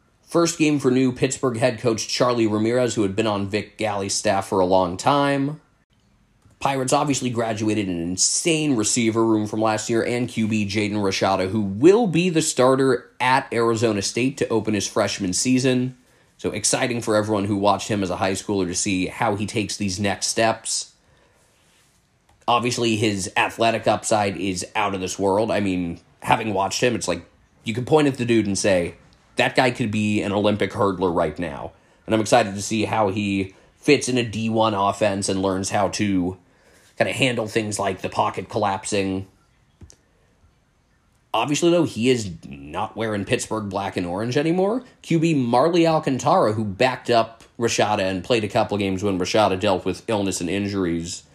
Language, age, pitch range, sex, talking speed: English, 20-39, 95-125 Hz, male, 180 wpm